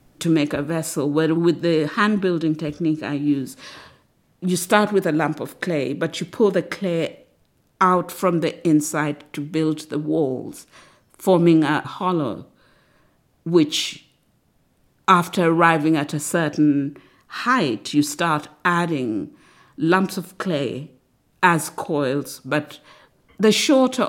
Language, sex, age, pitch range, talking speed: English, female, 50-69, 145-180 Hz, 130 wpm